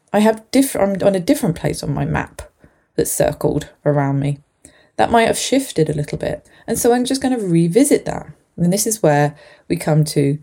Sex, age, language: female, 20-39, English